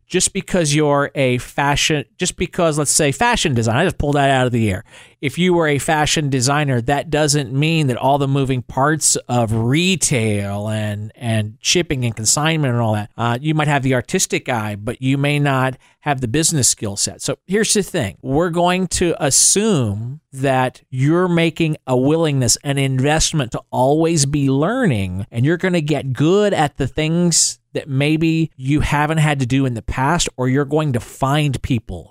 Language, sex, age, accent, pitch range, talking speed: English, male, 40-59, American, 125-165 Hz, 190 wpm